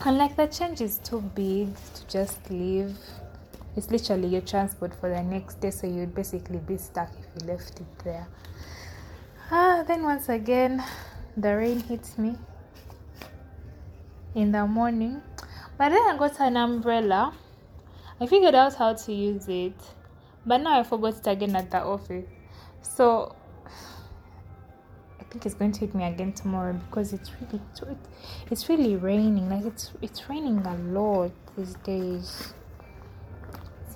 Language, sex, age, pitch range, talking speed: English, female, 10-29, 180-235 Hz, 145 wpm